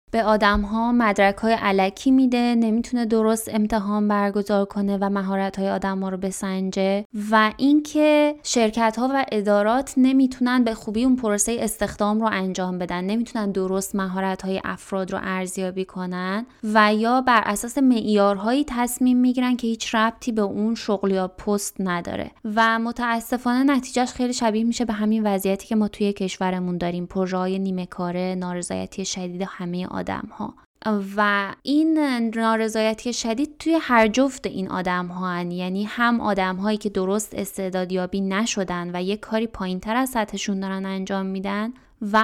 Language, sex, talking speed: Persian, female, 145 wpm